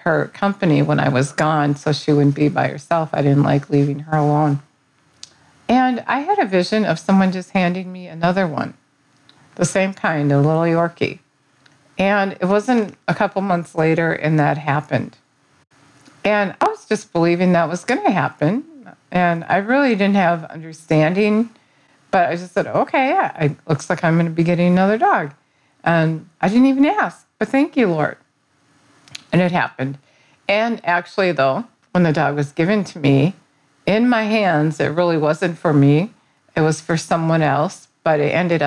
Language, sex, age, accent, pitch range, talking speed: English, female, 50-69, American, 145-195 Hz, 180 wpm